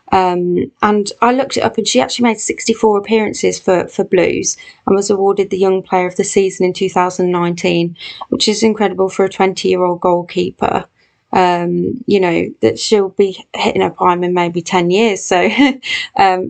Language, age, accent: English, 20-39, British